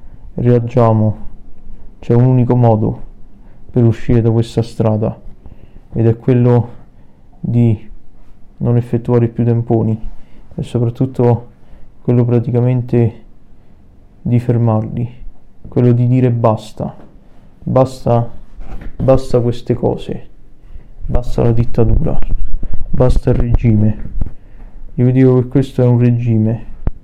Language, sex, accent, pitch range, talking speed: Italian, male, native, 115-125 Hz, 100 wpm